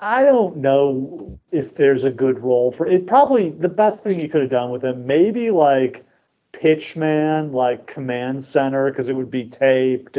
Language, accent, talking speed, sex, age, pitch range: English, American, 190 wpm, male, 40-59, 125-160 Hz